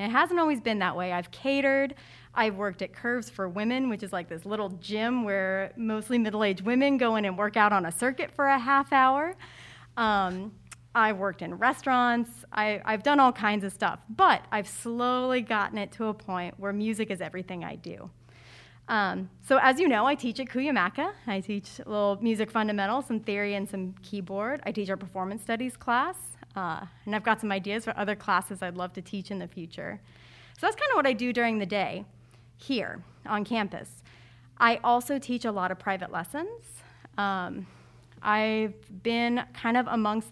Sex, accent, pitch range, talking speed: female, American, 195-245 Hz, 195 wpm